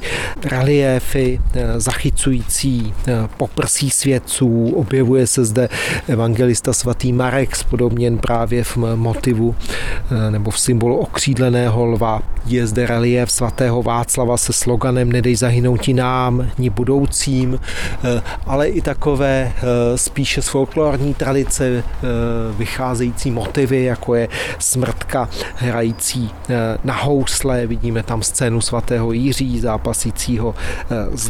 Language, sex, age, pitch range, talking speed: Czech, male, 30-49, 115-130 Hz, 100 wpm